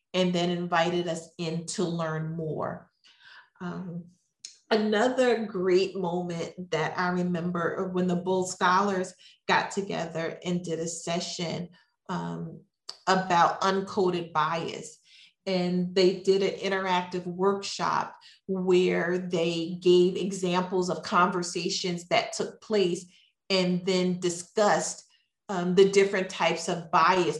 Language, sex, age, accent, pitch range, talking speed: English, female, 40-59, American, 170-190 Hz, 115 wpm